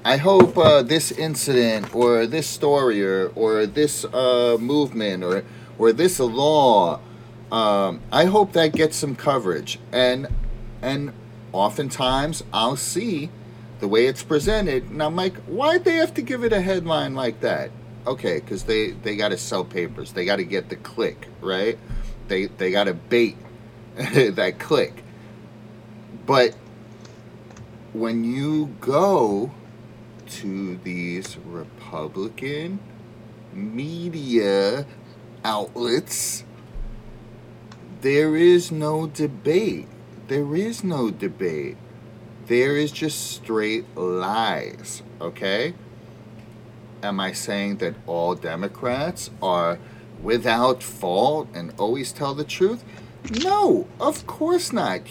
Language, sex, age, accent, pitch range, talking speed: English, male, 30-49, American, 115-155 Hz, 115 wpm